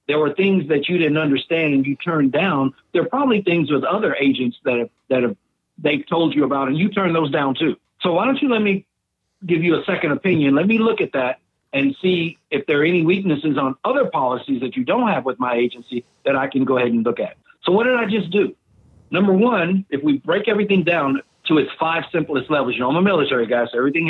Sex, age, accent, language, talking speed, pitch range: male, 50-69, American, English, 245 wpm, 140-205 Hz